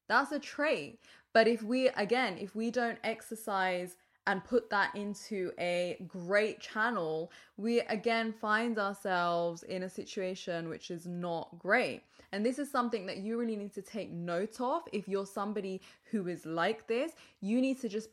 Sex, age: female, 10-29